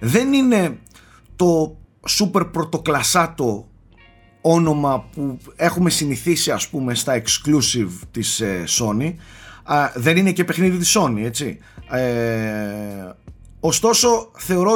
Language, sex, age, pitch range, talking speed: Greek, male, 30-49, 115-170 Hz, 100 wpm